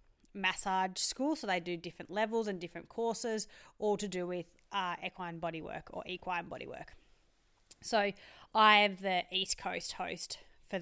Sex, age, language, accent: female, 20-39, English, Australian